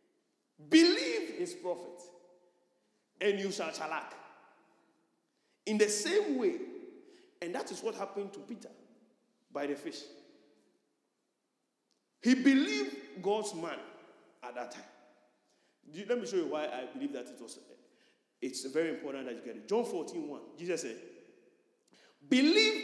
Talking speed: 130 wpm